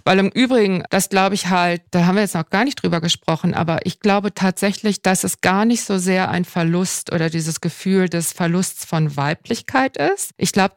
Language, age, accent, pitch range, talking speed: German, 50-69, German, 185-230 Hz, 210 wpm